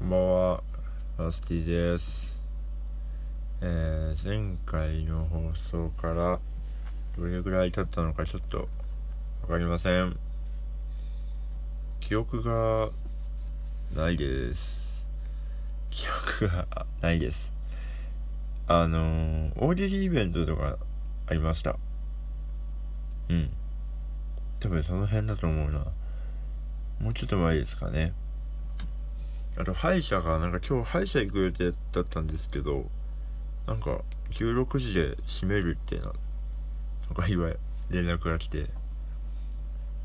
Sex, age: male, 20-39